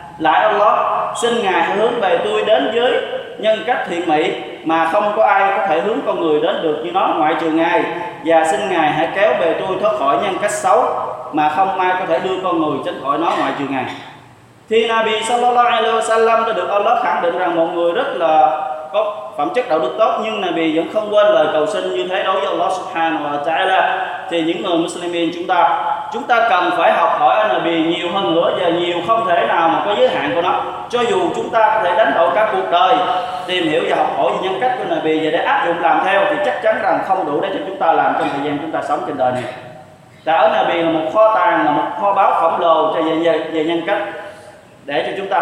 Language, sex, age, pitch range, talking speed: Vietnamese, male, 20-39, 160-215 Hz, 250 wpm